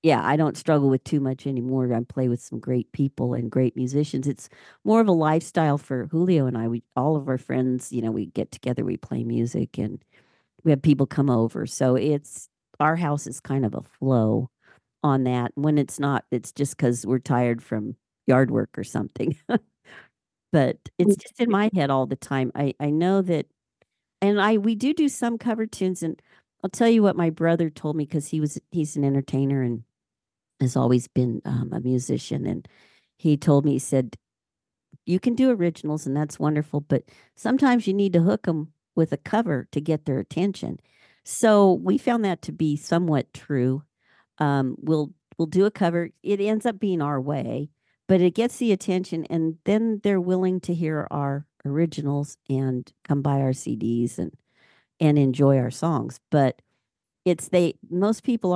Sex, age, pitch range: female, 50-69, 130-175 Hz